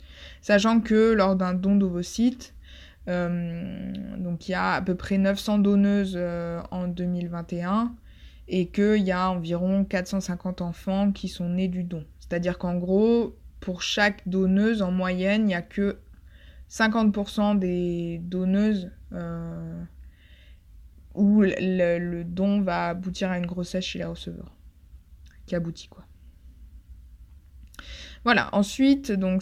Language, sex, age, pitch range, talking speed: French, female, 20-39, 175-210 Hz, 135 wpm